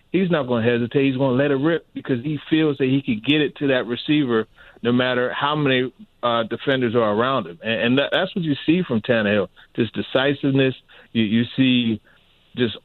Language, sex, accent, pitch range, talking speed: English, male, American, 115-140 Hz, 210 wpm